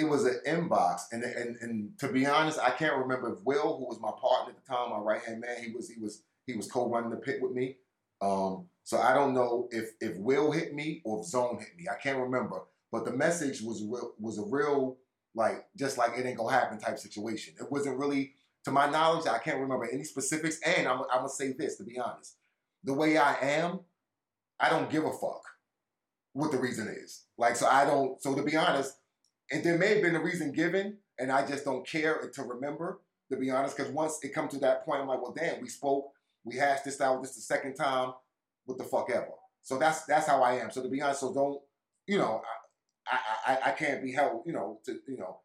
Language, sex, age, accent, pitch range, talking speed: English, male, 30-49, American, 120-145 Hz, 240 wpm